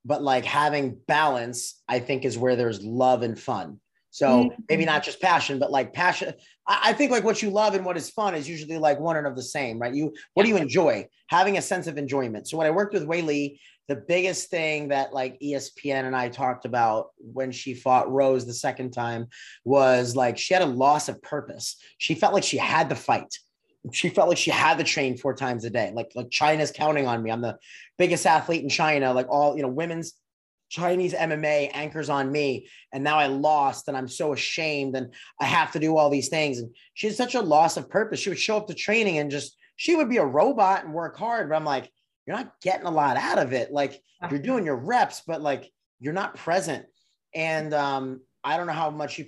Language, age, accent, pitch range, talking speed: English, 30-49, American, 130-170 Hz, 230 wpm